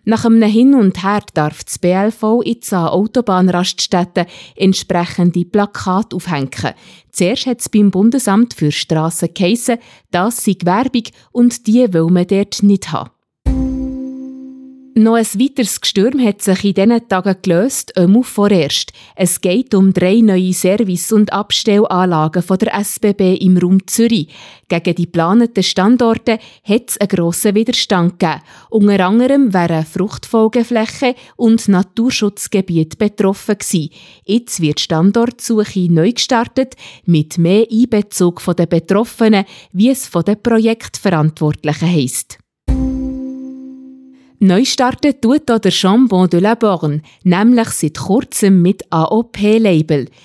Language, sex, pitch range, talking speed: German, female, 180-230 Hz, 130 wpm